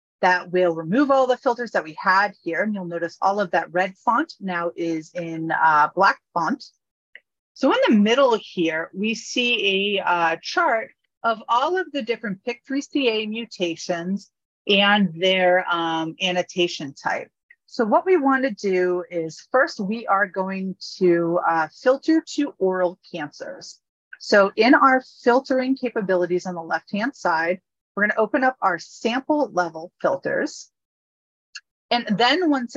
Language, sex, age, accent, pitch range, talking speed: English, female, 30-49, American, 170-240 Hz, 150 wpm